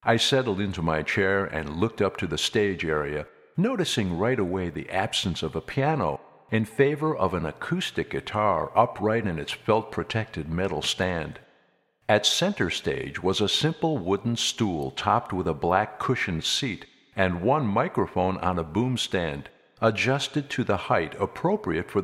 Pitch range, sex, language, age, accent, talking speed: 90-130 Hz, male, English, 50-69, American, 160 wpm